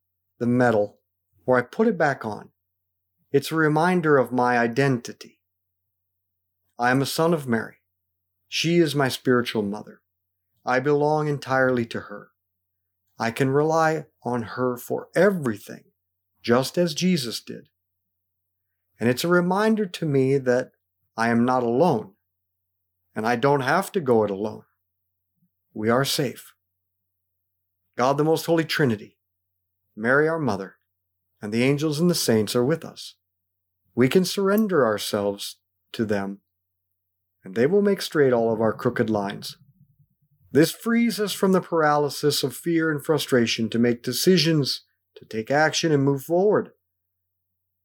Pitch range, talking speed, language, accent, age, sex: 90-150 Hz, 145 wpm, English, American, 50-69, male